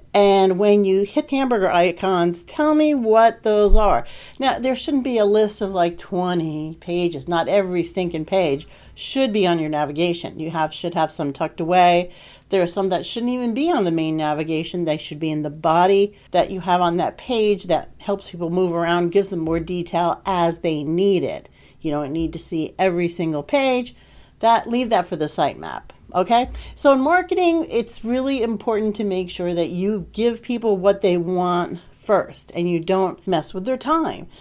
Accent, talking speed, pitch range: American, 195 wpm, 170-230 Hz